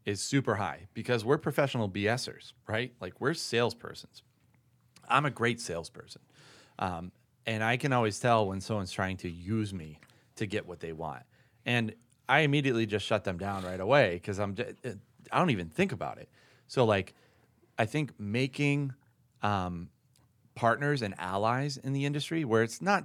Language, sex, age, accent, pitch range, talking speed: English, male, 30-49, American, 95-125 Hz, 170 wpm